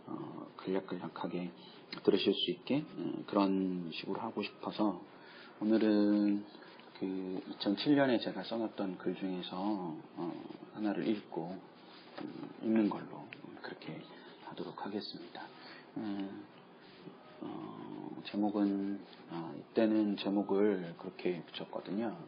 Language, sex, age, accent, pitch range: Korean, male, 40-59, native, 90-105 Hz